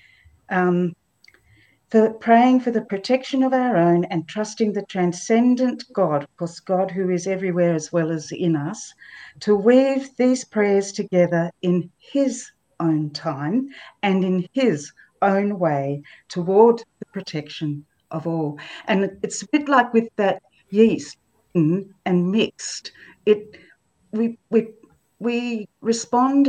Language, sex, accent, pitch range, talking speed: English, female, Australian, 165-215 Hz, 135 wpm